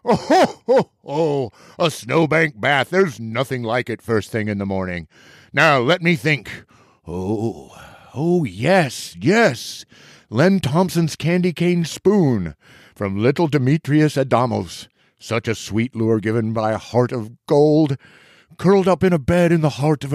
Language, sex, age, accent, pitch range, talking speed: English, male, 50-69, American, 105-145 Hz, 145 wpm